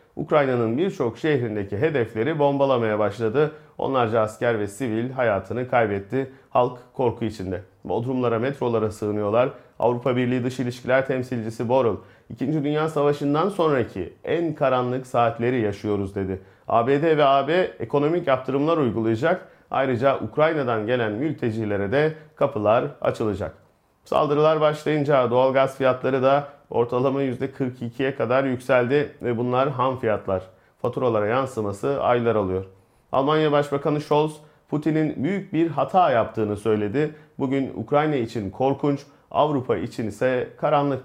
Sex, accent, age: male, native, 40-59